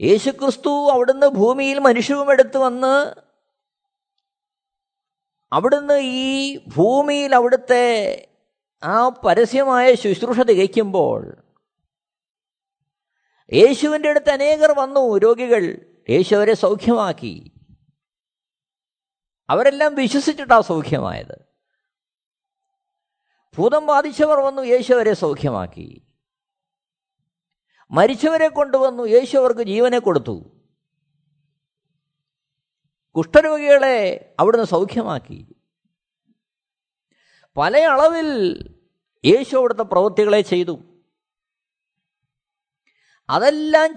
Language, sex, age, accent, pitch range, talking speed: Malayalam, male, 50-69, native, 225-300 Hz, 55 wpm